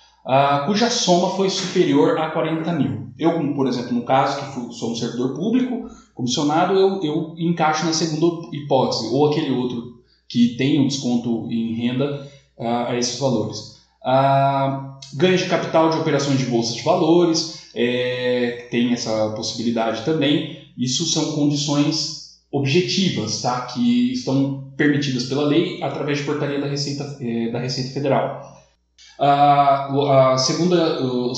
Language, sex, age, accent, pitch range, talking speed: Portuguese, male, 10-29, Brazilian, 135-170 Hz, 135 wpm